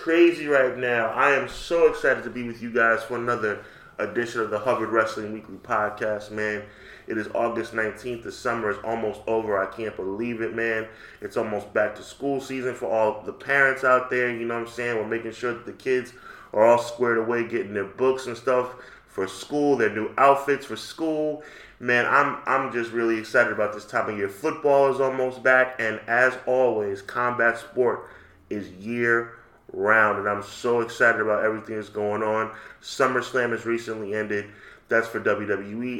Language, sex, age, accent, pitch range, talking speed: English, male, 20-39, American, 105-125 Hz, 190 wpm